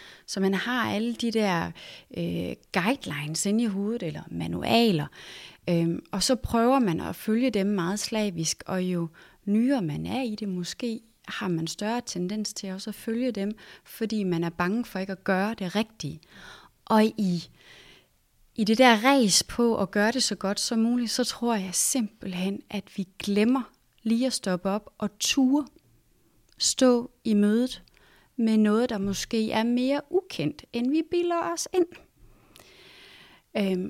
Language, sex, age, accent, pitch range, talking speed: Danish, female, 30-49, native, 180-230 Hz, 165 wpm